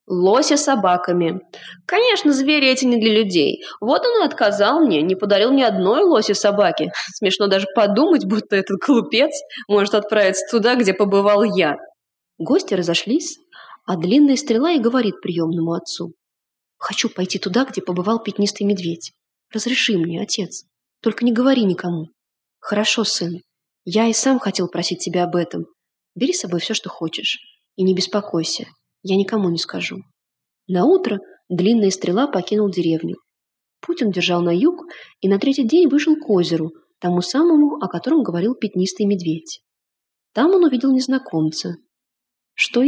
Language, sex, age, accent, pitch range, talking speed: Russian, female, 20-39, native, 180-265 Hz, 150 wpm